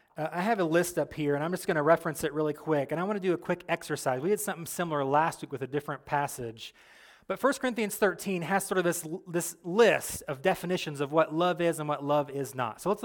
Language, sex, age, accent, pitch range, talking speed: English, male, 30-49, American, 150-190 Hz, 260 wpm